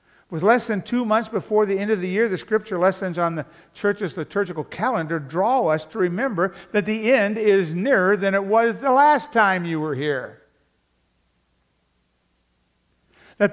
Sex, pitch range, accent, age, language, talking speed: male, 145-205 Hz, American, 50-69, English, 170 wpm